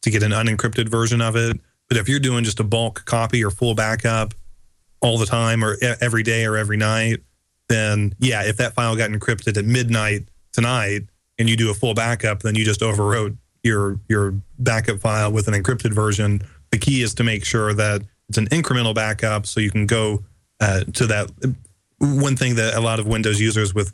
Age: 30-49